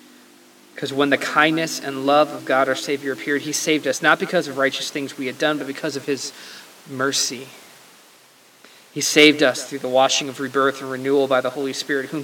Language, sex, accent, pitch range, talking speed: English, male, American, 130-150 Hz, 205 wpm